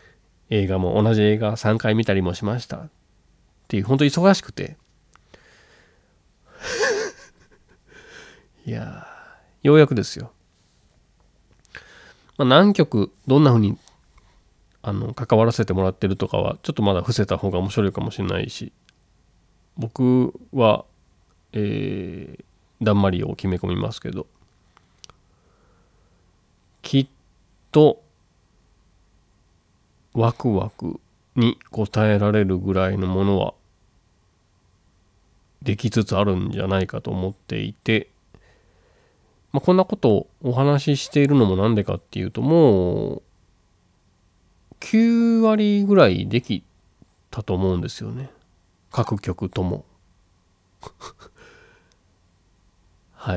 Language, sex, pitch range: Japanese, male, 90-120 Hz